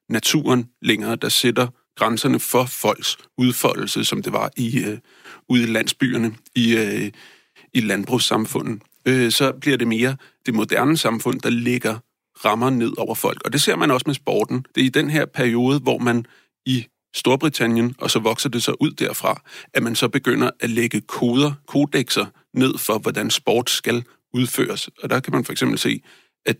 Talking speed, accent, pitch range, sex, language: 180 wpm, native, 115-135 Hz, male, Danish